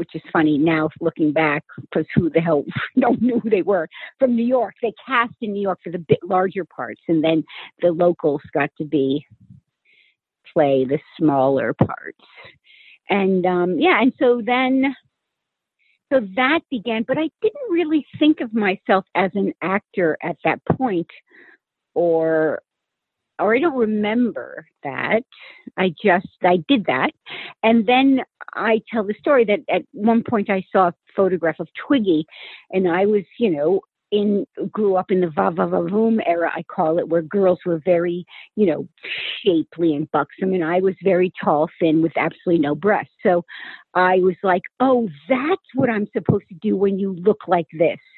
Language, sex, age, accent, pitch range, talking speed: English, female, 50-69, American, 170-235 Hz, 175 wpm